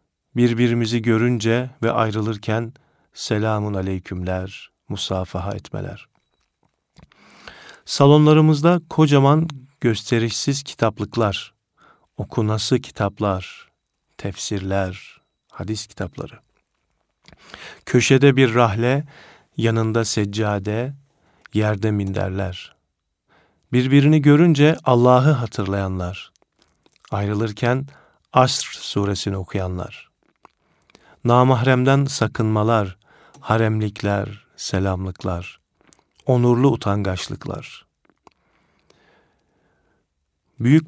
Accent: native